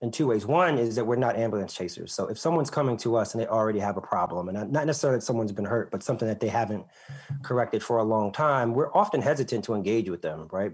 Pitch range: 105-120 Hz